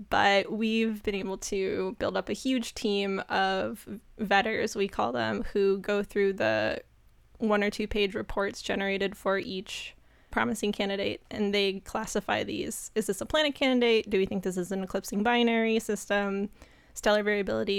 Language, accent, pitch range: English, American, 200-225 Hz